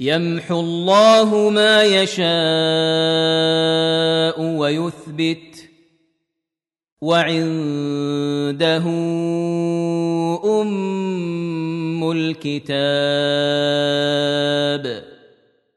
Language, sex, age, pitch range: Arabic, male, 30-49, 160-195 Hz